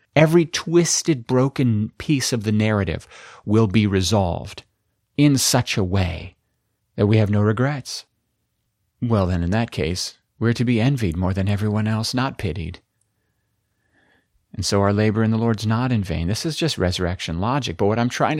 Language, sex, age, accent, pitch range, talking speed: English, male, 40-59, American, 95-120 Hz, 175 wpm